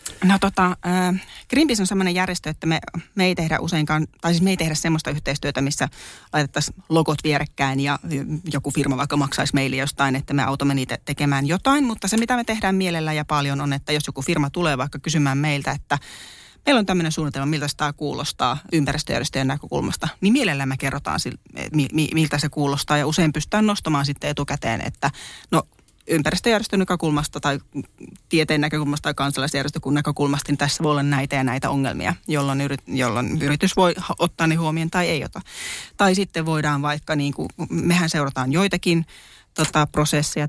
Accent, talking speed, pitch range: native, 175 wpm, 140-165 Hz